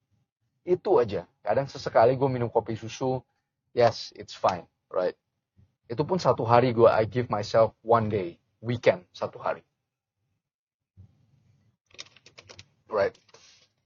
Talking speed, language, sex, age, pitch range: 110 wpm, Indonesian, male, 30-49, 105-130 Hz